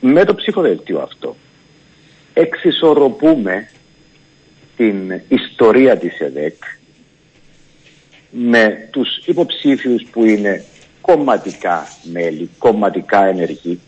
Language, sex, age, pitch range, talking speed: Greek, male, 50-69, 90-150 Hz, 80 wpm